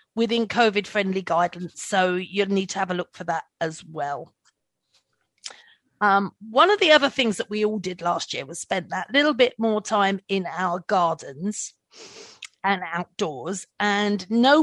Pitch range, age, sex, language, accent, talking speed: 190-250 Hz, 40-59, female, English, British, 170 wpm